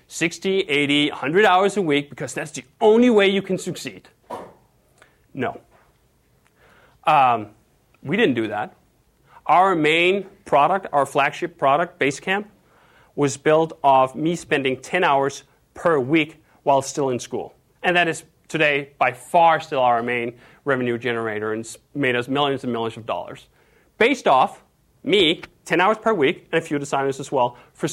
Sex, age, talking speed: male, 30-49, 155 wpm